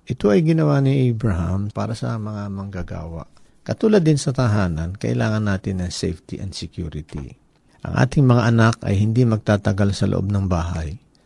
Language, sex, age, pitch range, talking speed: Filipino, male, 50-69, 90-110 Hz, 165 wpm